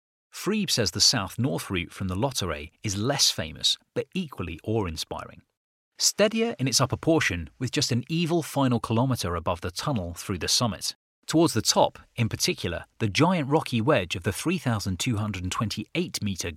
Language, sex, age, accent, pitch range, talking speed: English, male, 30-49, British, 95-135 Hz, 155 wpm